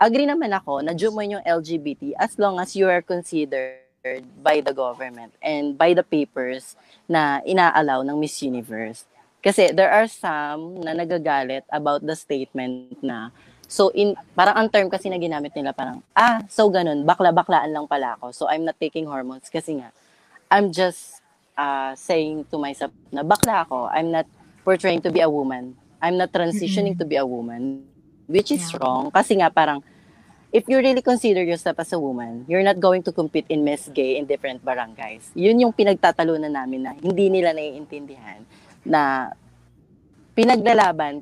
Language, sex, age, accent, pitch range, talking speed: English, female, 20-39, Filipino, 140-195 Hz, 170 wpm